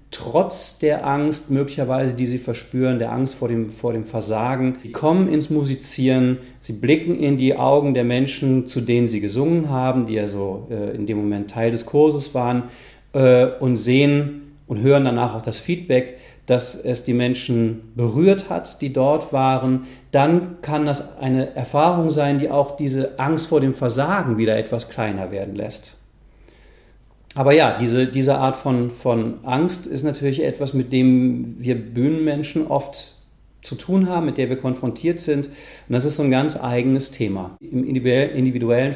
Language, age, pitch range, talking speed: German, 40-59, 120-145 Hz, 170 wpm